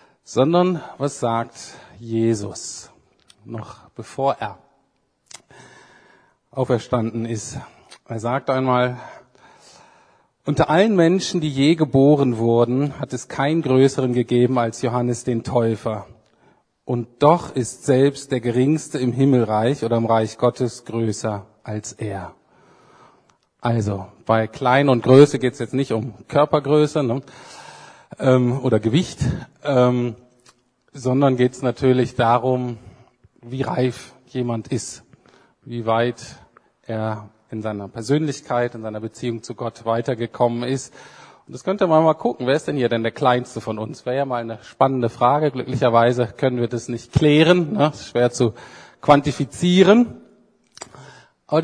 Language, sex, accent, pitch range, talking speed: German, male, German, 115-140 Hz, 135 wpm